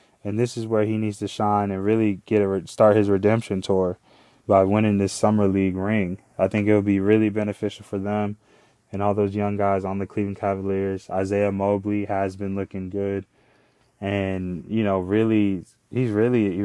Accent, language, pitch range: American, English, 100-110 Hz